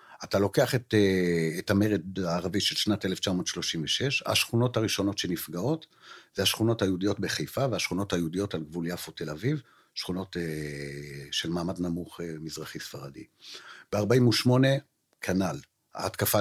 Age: 60-79